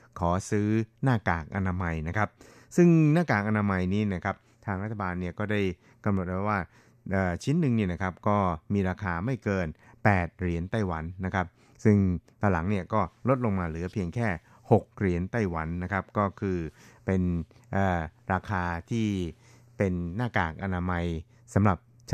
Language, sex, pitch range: Thai, male, 90-110 Hz